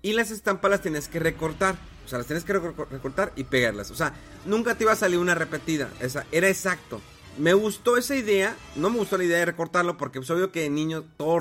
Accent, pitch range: Mexican, 130-190 Hz